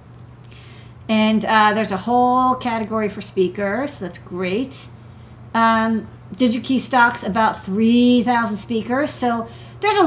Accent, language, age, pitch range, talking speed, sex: American, English, 40-59, 185-230 Hz, 125 wpm, female